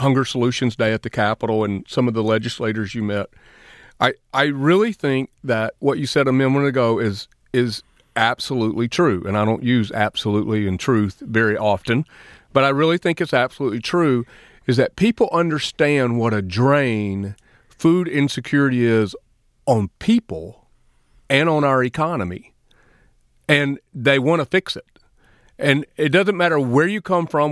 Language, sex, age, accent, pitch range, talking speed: English, male, 40-59, American, 110-150 Hz, 160 wpm